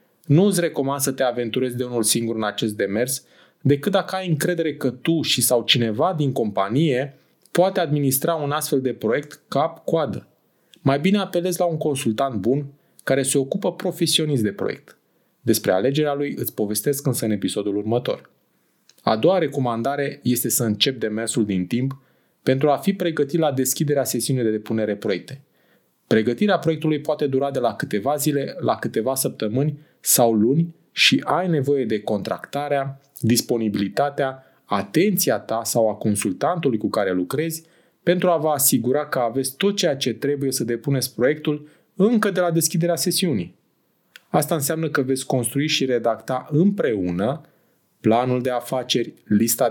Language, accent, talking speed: Romanian, native, 155 wpm